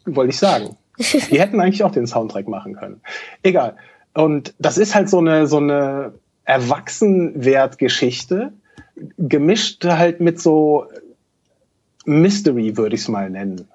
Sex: male